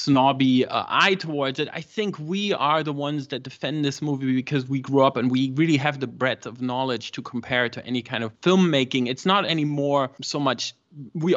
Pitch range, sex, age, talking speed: 130-160 Hz, male, 20-39, 215 wpm